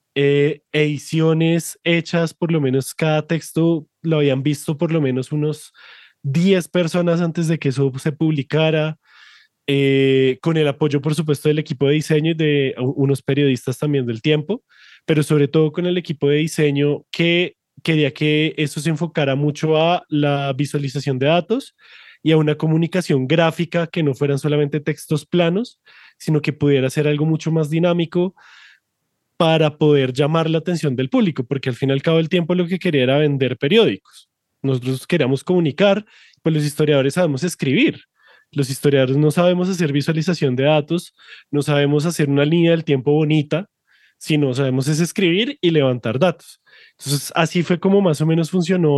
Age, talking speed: 20-39, 170 wpm